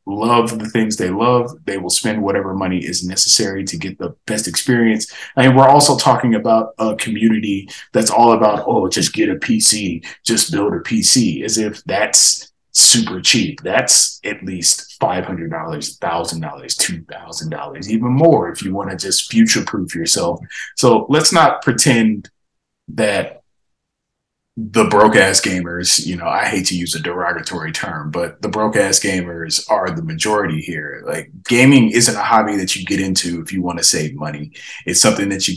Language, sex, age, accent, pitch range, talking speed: English, male, 30-49, American, 90-120 Hz, 175 wpm